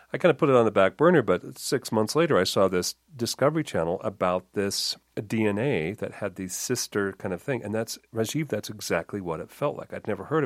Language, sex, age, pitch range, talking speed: English, male, 40-59, 90-115 Hz, 230 wpm